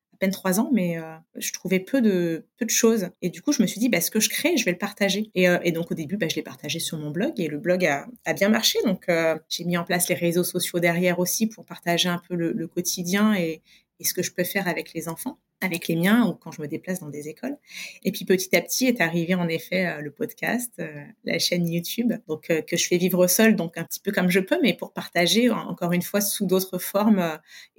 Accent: French